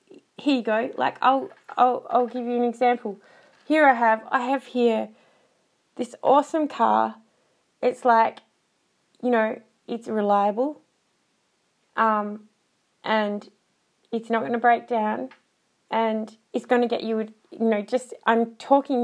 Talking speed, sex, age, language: 140 wpm, female, 20-39, English